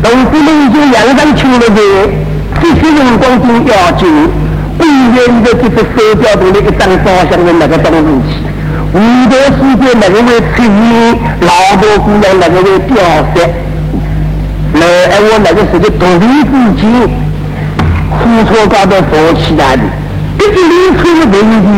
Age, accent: 50-69, Indian